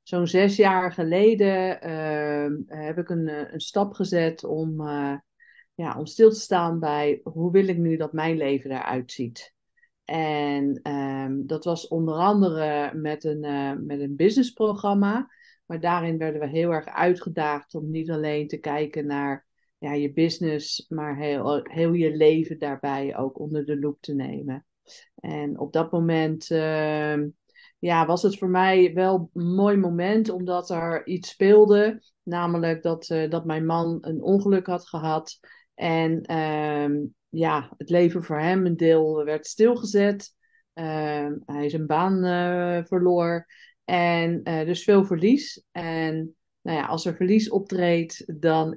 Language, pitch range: Dutch, 150-185 Hz